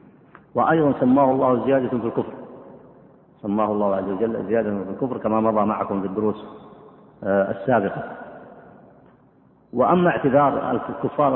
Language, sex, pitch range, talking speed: Arabic, male, 115-140 Hz, 115 wpm